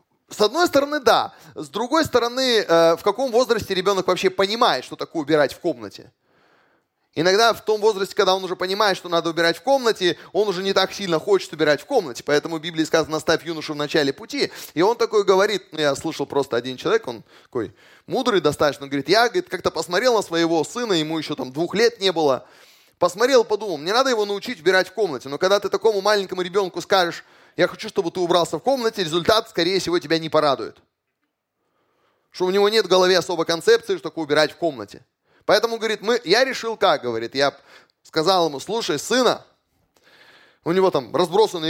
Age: 20-39